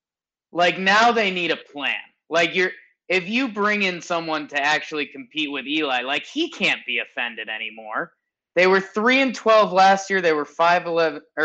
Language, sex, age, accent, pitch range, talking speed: English, male, 20-39, American, 150-210 Hz, 185 wpm